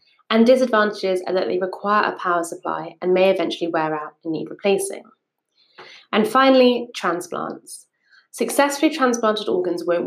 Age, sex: 20-39, female